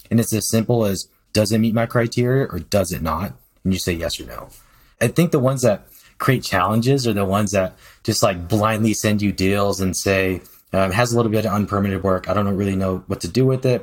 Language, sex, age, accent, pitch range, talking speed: English, male, 20-39, American, 95-115 Hz, 245 wpm